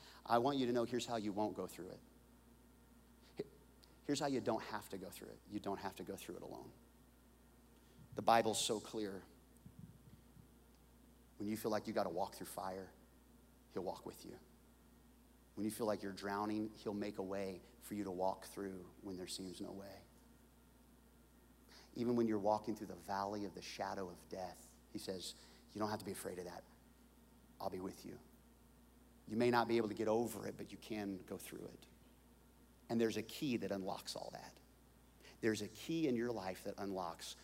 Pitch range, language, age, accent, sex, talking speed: 95-120 Hz, English, 30-49, American, male, 200 wpm